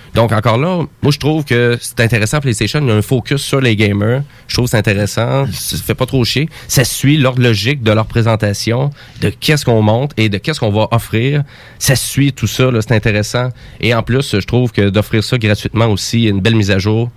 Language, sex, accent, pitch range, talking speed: French, male, Canadian, 110-140 Hz, 235 wpm